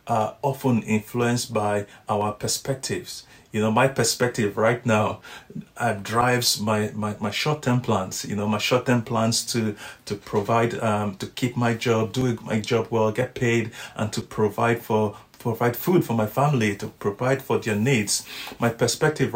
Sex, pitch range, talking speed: male, 110-125 Hz, 175 wpm